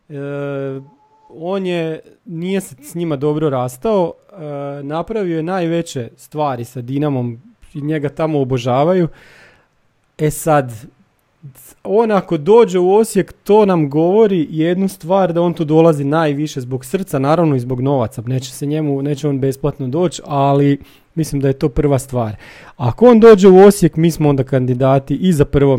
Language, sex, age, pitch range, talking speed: Croatian, male, 30-49, 140-175 Hz, 160 wpm